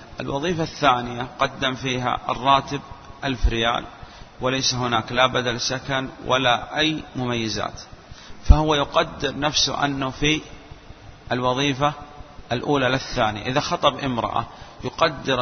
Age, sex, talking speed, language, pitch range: 40-59, male, 110 wpm, Arabic, 125-150 Hz